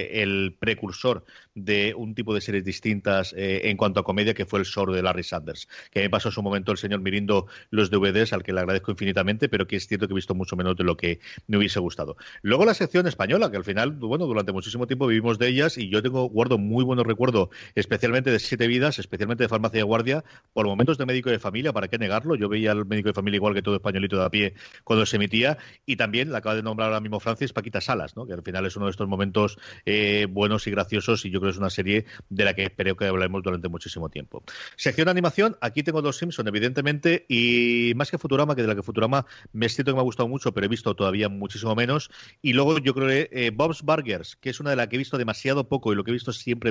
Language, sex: Spanish, male